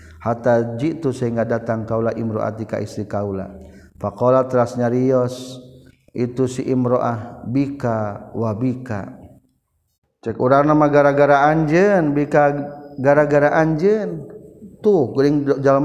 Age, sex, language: 40-59, male, Indonesian